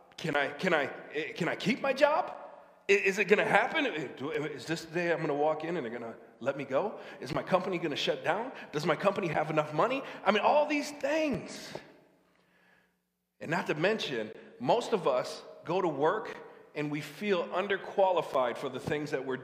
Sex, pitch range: male, 145-195 Hz